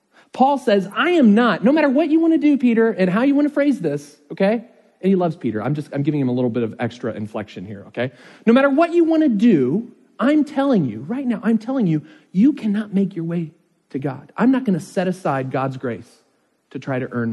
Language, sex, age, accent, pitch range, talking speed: English, male, 40-59, American, 120-170 Hz, 250 wpm